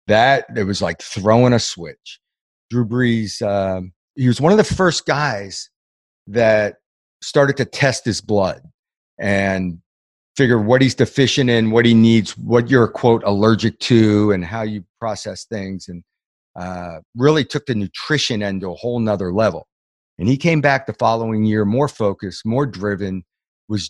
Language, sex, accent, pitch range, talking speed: English, male, American, 95-115 Hz, 165 wpm